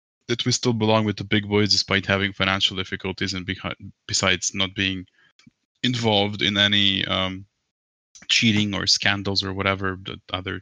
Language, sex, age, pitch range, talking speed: English, male, 20-39, 95-110 Hz, 160 wpm